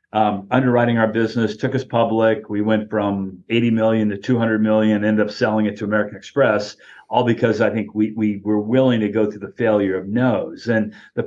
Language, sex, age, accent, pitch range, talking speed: English, male, 40-59, American, 105-115 Hz, 210 wpm